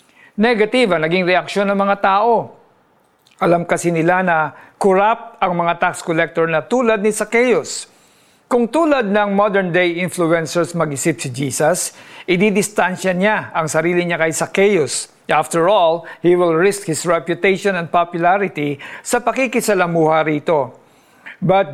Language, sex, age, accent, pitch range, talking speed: Filipino, male, 50-69, native, 160-200 Hz, 130 wpm